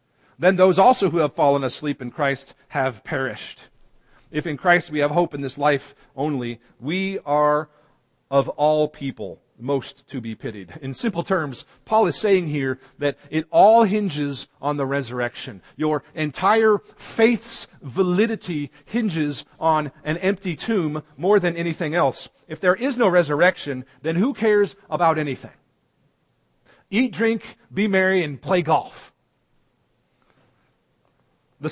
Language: English